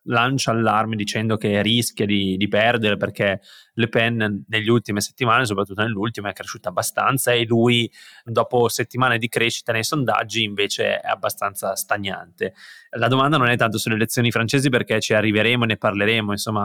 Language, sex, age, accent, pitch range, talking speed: Italian, male, 20-39, native, 110-120 Hz, 160 wpm